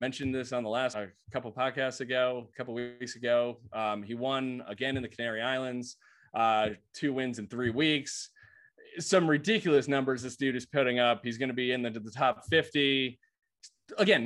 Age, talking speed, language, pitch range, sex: 20-39, 195 wpm, English, 115-145 Hz, male